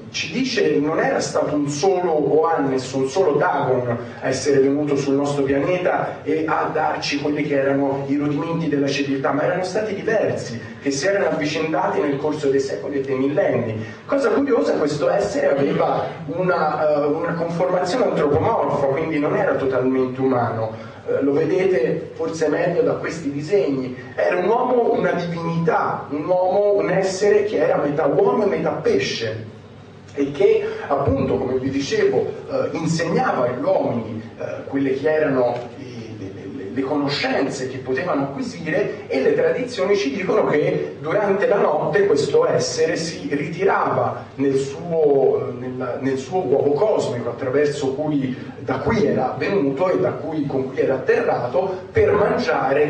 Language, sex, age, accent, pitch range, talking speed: Italian, male, 40-59, native, 135-185 Hz, 150 wpm